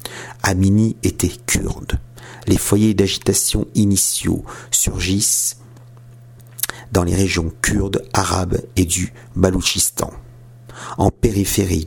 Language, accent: French, French